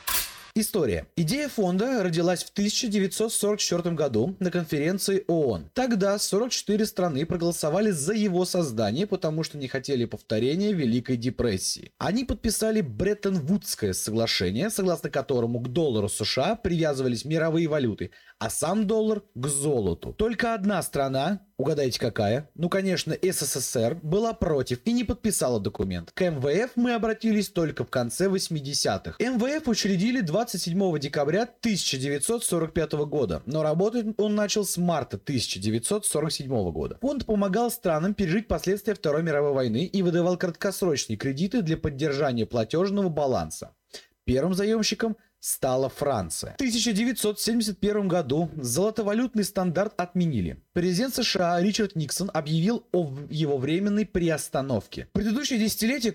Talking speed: 125 wpm